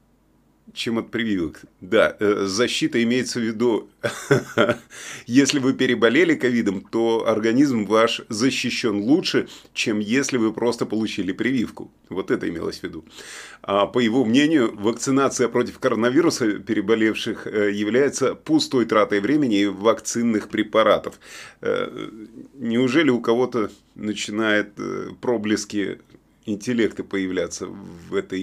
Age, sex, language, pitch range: 30-49, male, Russian, 100-125 Hz